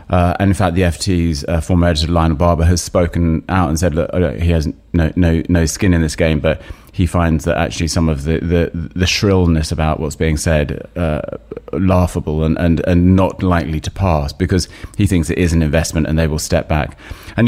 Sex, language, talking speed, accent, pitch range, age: male, English, 215 wpm, British, 80-90 Hz, 30-49